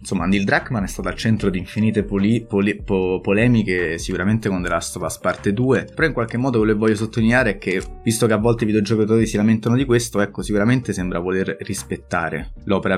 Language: Italian